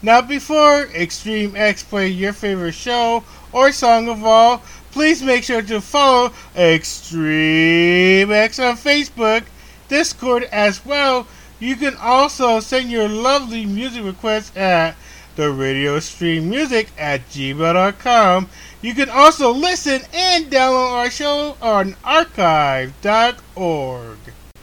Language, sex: English, male